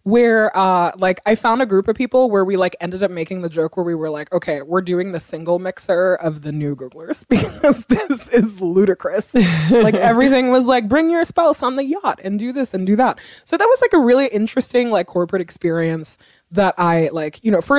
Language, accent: English, American